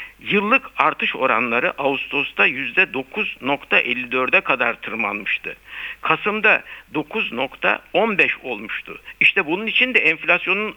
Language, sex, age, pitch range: Turkish, male, 60-79, 140-215 Hz